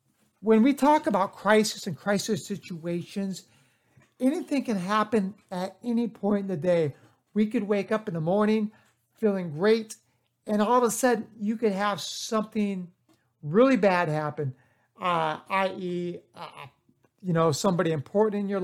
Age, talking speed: 60-79, 150 wpm